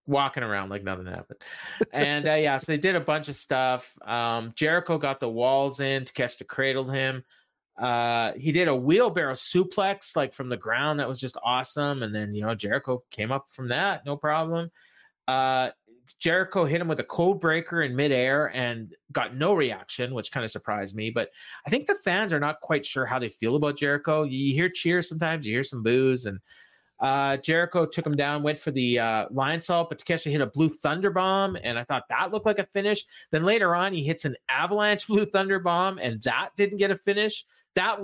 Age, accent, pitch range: 30-49, American, 130-170 Hz